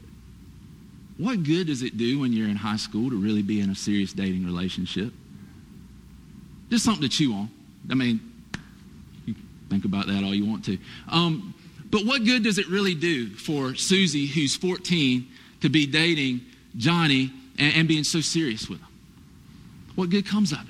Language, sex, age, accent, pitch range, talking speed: English, male, 40-59, American, 120-160 Hz, 175 wpm